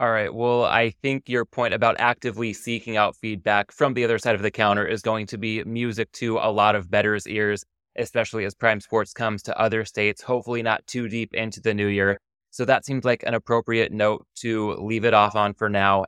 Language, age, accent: English, 20-39, American